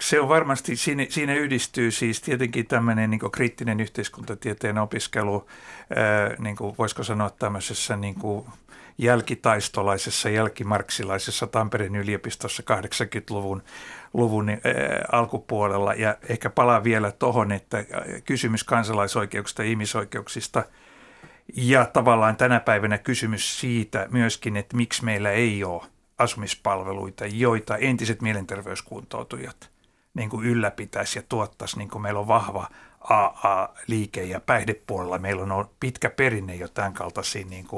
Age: 60-79